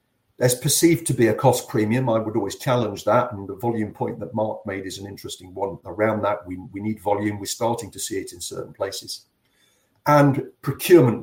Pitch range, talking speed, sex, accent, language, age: 105-125 Hz, 210 wpm, male, British, English, 50-69